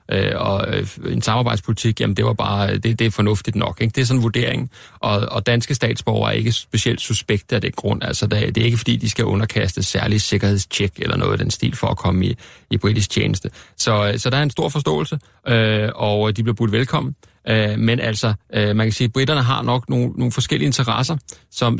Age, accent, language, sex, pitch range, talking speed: 30-49, native, Danish, male, 105-125 Hz, 215 wpm